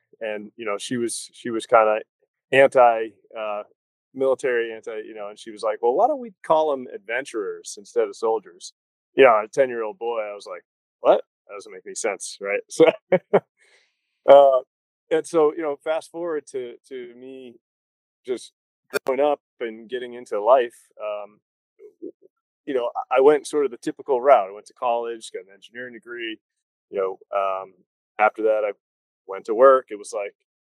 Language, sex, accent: English, male, American